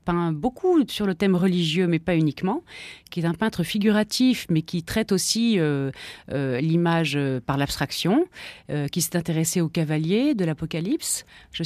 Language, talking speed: French, 170 wpm